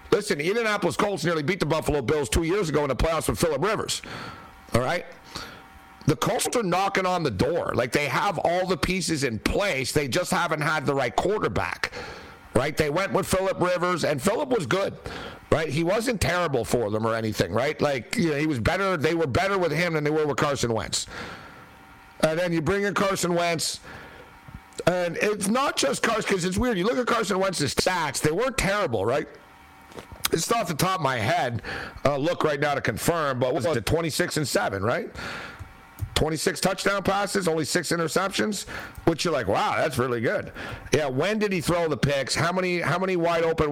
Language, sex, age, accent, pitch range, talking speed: English, male, 50-69, American, 135-185 Hz, 205 wpm